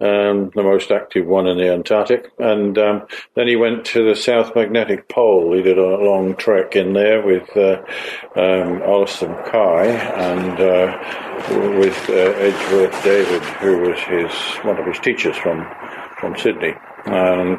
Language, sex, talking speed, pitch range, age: English, male, 165 wpm, 95-110 Hz, 50-69